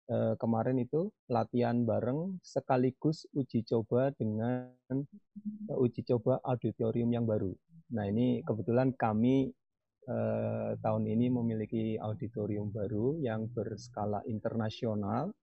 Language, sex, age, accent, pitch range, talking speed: Indonesian, male, 30-49, native, 105-130 Hz, 100 wpm